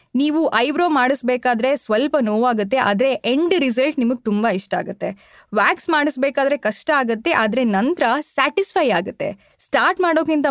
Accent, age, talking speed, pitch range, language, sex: native, 20-39, 125 wpm, 215-300 Hz, Kannada, female